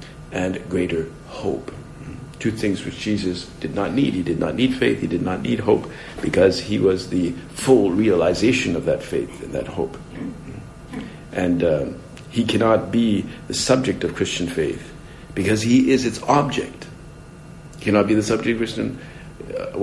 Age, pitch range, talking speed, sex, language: 60-79, 95-125 Hz, 165 wpm, male, English